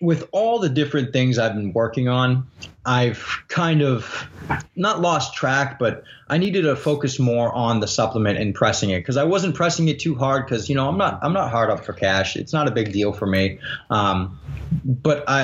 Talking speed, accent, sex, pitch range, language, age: 210 wpm, American, male, 105-135 Hz, English, 20-39